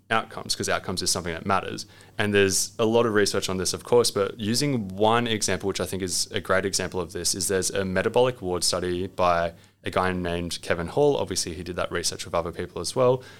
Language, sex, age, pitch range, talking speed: English, male, 20-39, 90-110 Hz, 235 wpm